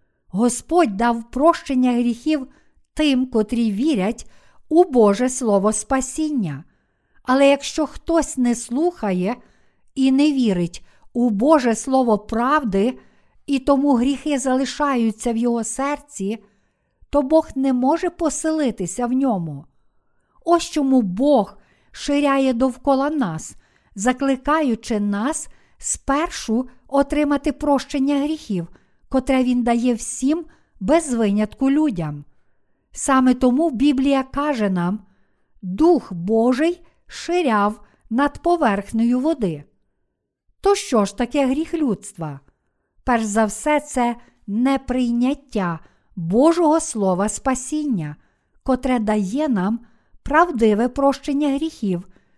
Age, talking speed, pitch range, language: 50-69, 100 wpm, 220-290 Hz, Ukrainian